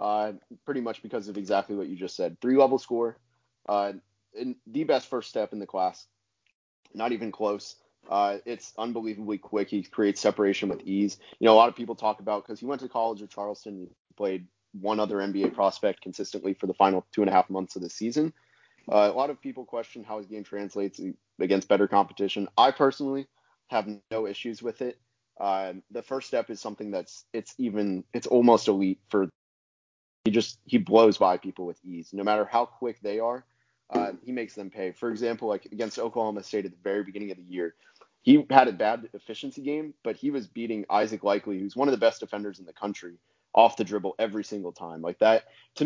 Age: 30-49